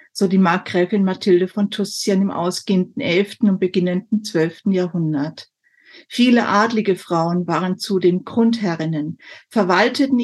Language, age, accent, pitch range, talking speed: German, 50-69, German, 190-245 Hz, 115 wpm